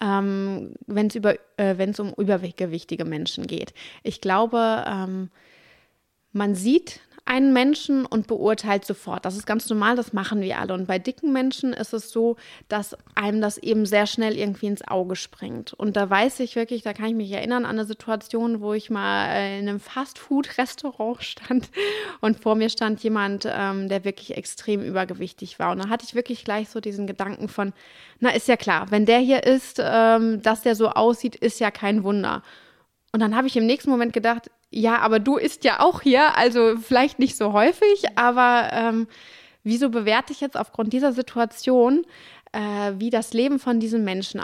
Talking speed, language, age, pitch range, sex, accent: 185 wpm, German, 20-39, 205-245 Hz, female, German